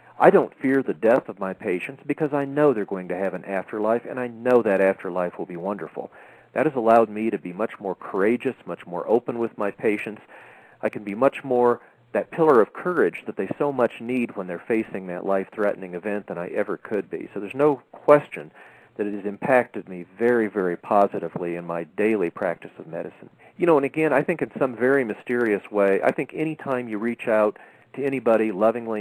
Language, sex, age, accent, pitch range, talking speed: English, male, 40-59, American, 95-120 Hz, 215 wpm